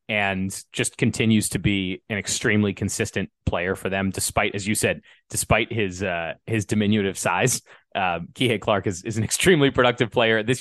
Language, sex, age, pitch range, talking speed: English, male, 30-49, 100-120 Hz, 175 wpm